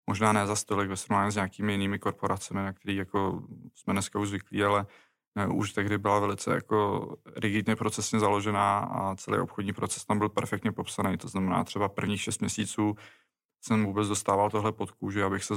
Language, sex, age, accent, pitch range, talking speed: Czech, male, 20-39, native, 100-105 Hz, 185 wpm